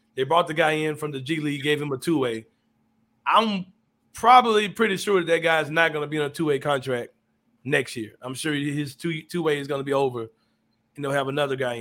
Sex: male